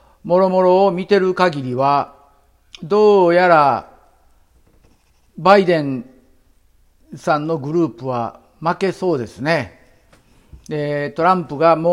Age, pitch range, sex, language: 50-69, 145-195 Hz, male, Japanese